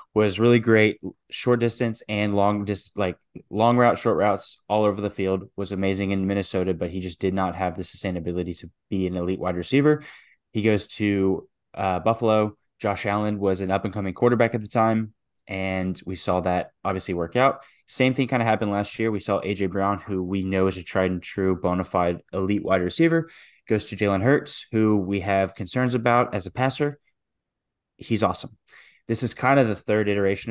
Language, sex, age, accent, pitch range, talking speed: English, male, 10-29, American, 95-110 Hz, 200 wpm